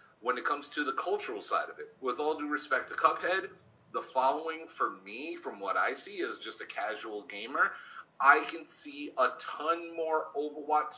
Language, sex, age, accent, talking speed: English, male, 30-49, American, 190 wpm